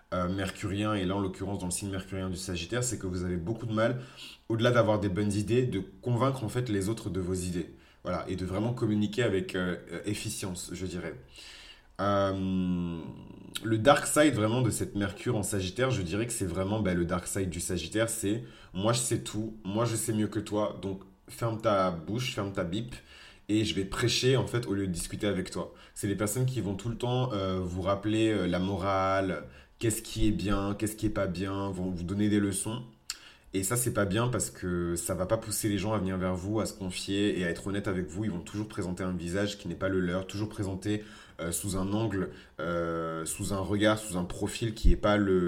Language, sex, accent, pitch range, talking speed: French, male, French, 90-110 Hz, 240 wpm